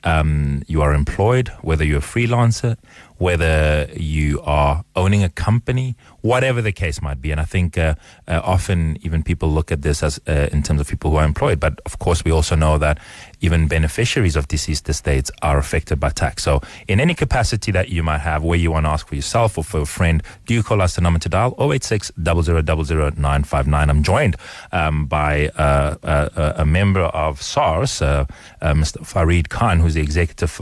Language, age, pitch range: English, 30-49, 75-95 Hz